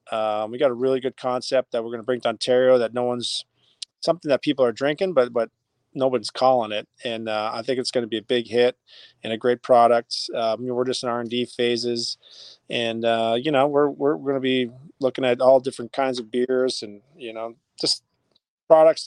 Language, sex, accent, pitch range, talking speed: English, male, American, 115-130 Hz, 225 wpm